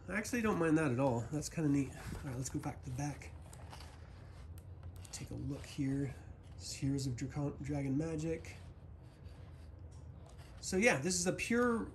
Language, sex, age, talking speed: English, male, 30-49, 175 wpm